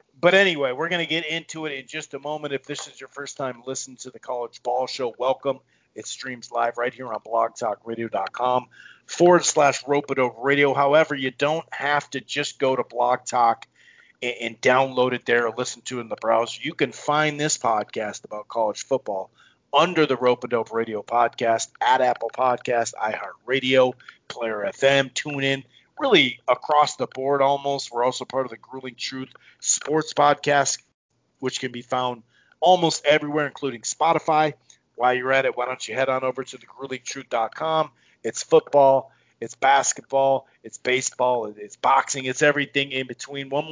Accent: American